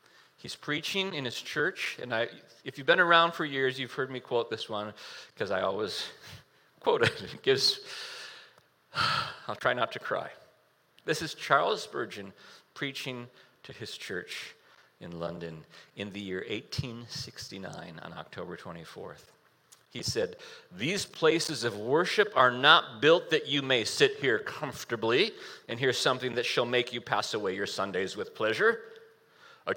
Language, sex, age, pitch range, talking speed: English, male, 40-59, 125-200 Hz, 155 wpm